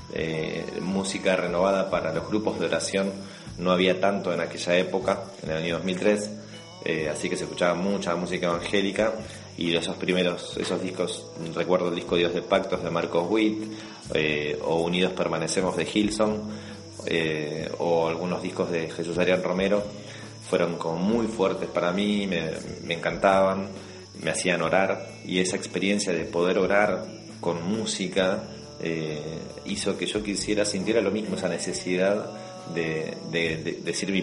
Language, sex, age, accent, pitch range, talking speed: Spanish, male, 30-49, Argentinian, 85-105 Hz, 155 wpm